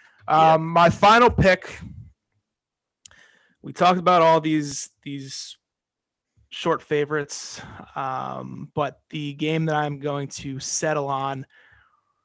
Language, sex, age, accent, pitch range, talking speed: English, male, 30-49, American, 140-160 Hz, 110 wpm